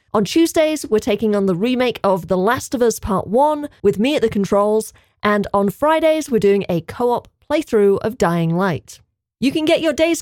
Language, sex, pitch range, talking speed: English, female, 185-260 Hz, 205 wpm